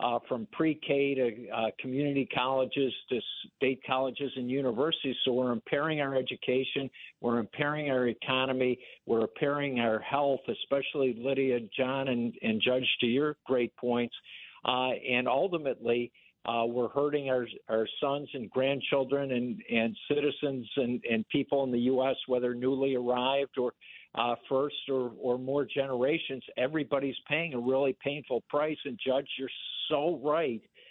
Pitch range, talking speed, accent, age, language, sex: 125-145 Hz, 145 wpm, American, 50-69, English, male